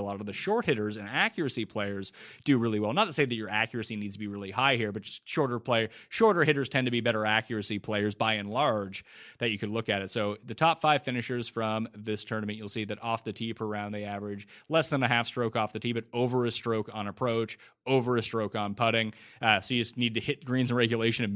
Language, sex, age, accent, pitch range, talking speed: English, male, 30-49, American, 105-125 Hz, 260 wpm